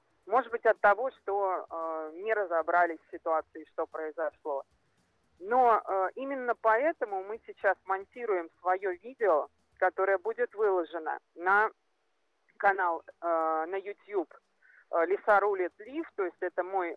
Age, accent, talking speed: 30-49, native, 125 wpm